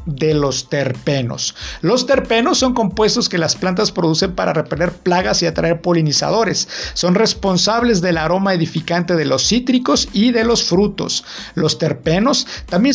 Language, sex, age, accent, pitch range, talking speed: Spanish, male, 50-69, Mexican, 160-215 Hz, 150 wpm